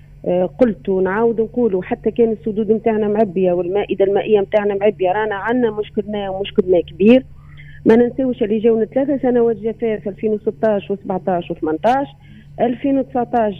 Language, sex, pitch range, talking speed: Arabic, female, 180-220 Hz, 125 wpm